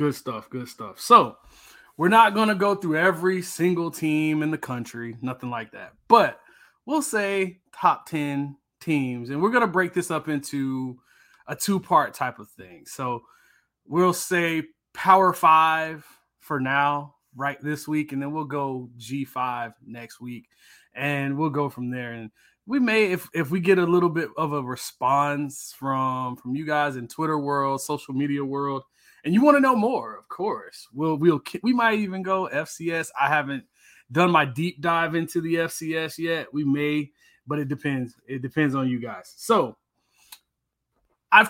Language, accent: English, American